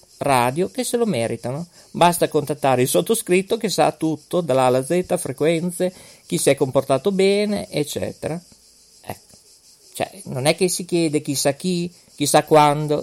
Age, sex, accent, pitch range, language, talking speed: 40-59, male, native, 130-180 Hz, Italian, 150 wpm